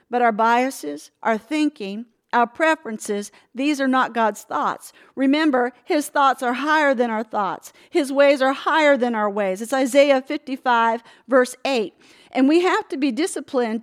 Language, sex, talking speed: English, female, 165 wpm